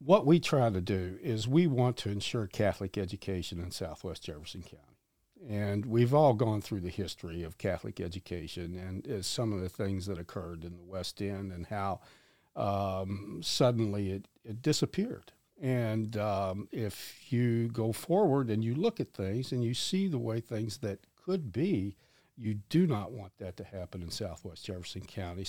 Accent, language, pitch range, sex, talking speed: American, English, 95-120 Hz, male, 175 wpm